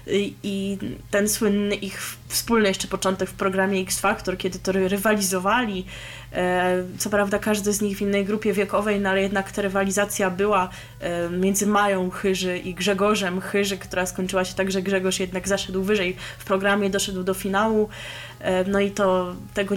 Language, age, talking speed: Polish, 20-39, 160 wpm